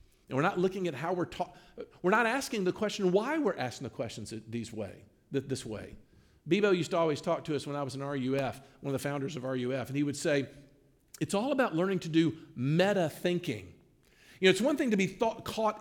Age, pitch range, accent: 50-69, 135-195 Hz, American